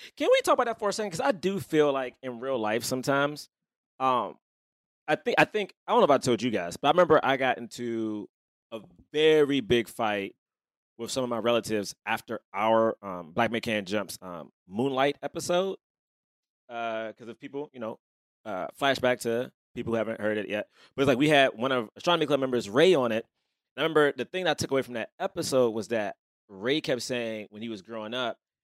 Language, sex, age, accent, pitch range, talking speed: English, male, 20-39, American, 115-155 Hz, 220 wpm